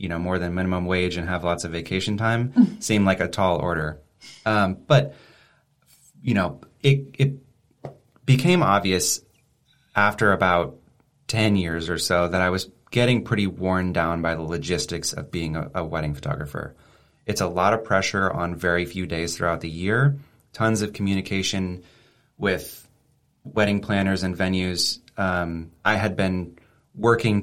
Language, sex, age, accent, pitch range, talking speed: English, male, 30-49, American, 90-105 Hz, 160 wpm